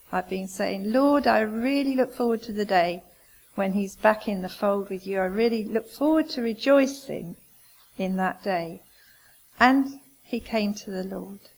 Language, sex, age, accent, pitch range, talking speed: English, female, 50-69, British, 195-245 Hz, 175 wpm